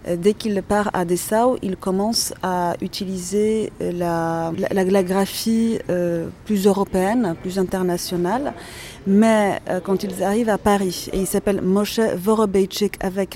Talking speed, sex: 140 wpm, female